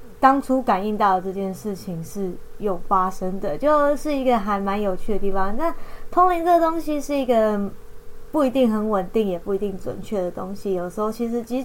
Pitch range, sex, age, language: 190-230 Hz, female, 20-39, Chinese